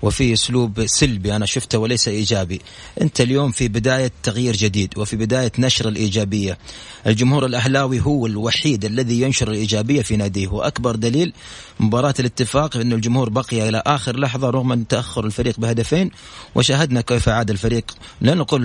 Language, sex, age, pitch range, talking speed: English, male, 30-49, 110-130 Hz, 150 wpm